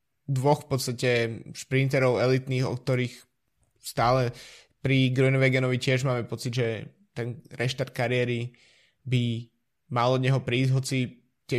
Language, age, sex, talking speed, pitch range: Slovak, 20-39, male, 125 wpm, 120-135 Hz